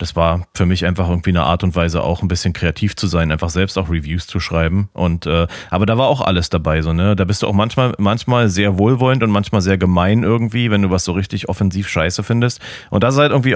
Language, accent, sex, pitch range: German, German, male, 90-110 Hz